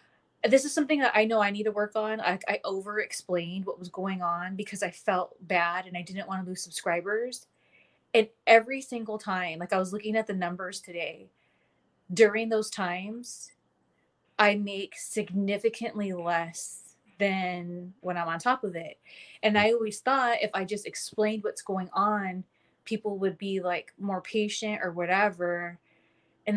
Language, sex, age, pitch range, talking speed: English, female, 20-39, 180-215 Hz, 170 wpm